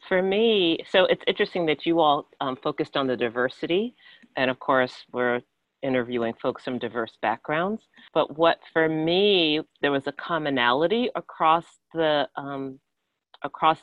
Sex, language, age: female, English, 40-59